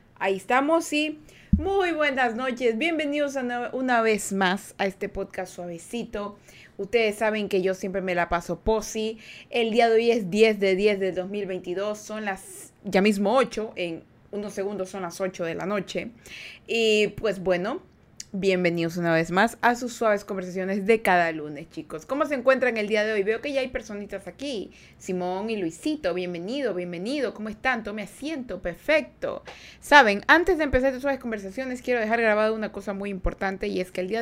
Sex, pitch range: female, 190-235 Hz